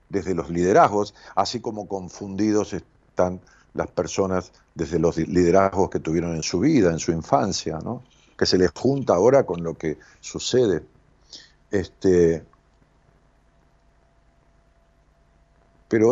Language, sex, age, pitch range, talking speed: Spanish, male, 50-69, 95-140 Hz, 120 wpm